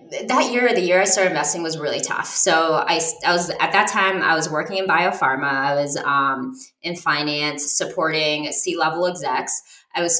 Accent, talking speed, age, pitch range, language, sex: American, 190 wpm, 20-39, 155-195 Hz, English, female